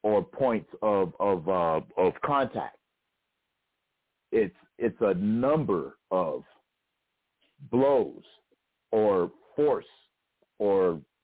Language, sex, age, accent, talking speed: English, male, 50-69, American, 85 wpm